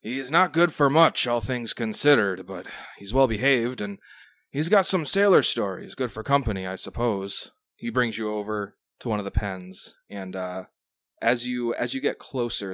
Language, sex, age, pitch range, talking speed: English, male, 20-39, 95-120 Hz, 175 wpm